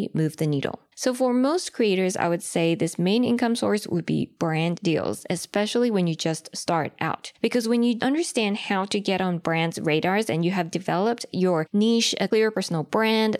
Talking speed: 195 wpm